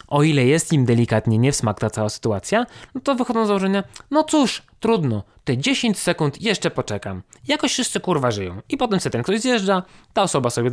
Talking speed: 205 wpm